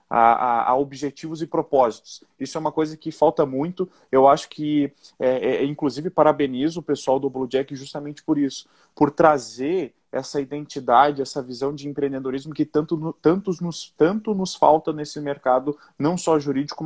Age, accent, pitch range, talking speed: 30-49, Brazilian, 130-155 Hz, 170 wpm